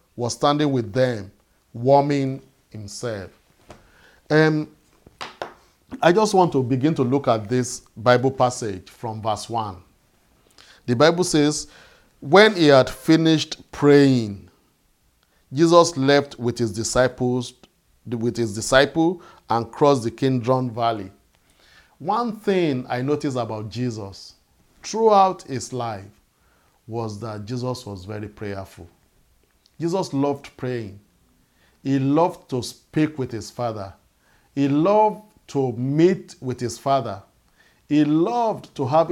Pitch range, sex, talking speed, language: 115-155 Hz, male, 120 wpm, English